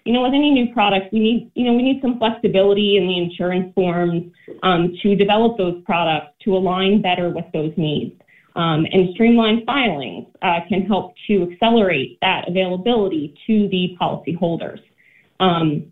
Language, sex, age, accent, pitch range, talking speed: English, female, 30-49, American, 175-220 Hz, 165 wpm